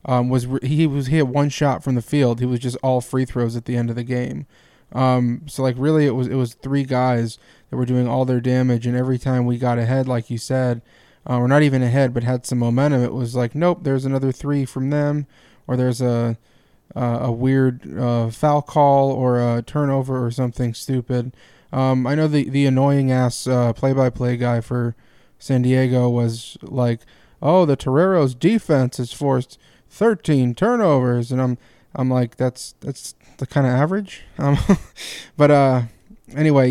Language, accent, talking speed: English, American, 200 wpm